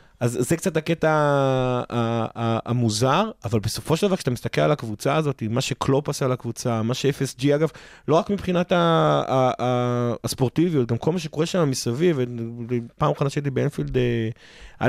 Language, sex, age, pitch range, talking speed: Hebrew, male, 20-39, 125-155 Hz, 165 wpm